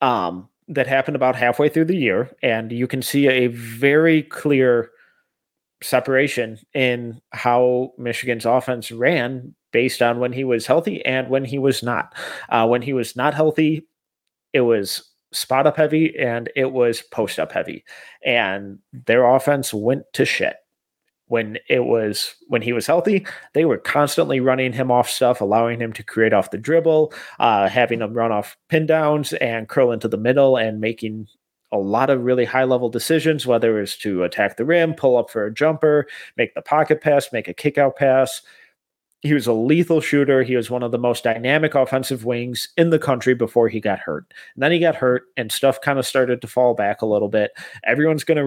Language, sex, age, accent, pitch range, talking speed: English, male, 30-49, American, 120-145 Hz, 190 wpm